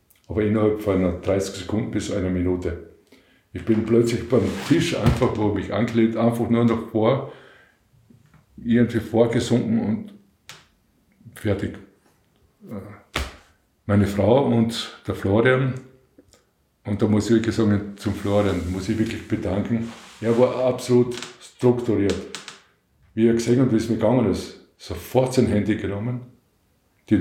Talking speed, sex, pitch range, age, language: 130 wpm, male, 100-115 Hz, 50-69, German